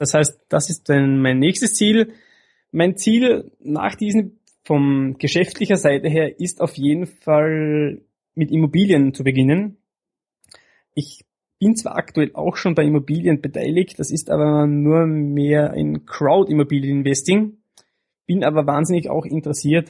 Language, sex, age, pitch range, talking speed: German, male, 20-39, 140-170 Hz, 135 wpm